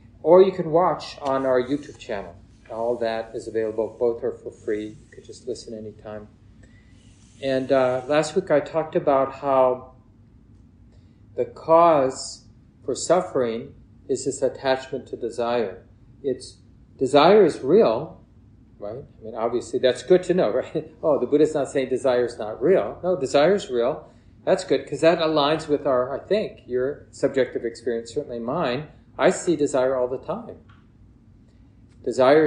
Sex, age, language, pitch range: male, 40-59, English, 115-150 Hz